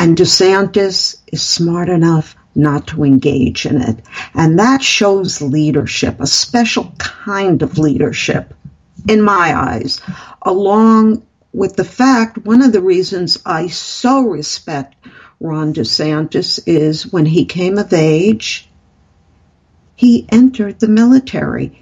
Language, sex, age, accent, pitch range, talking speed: English, female, 50-69, American, 155-210 Hz, 125 wpm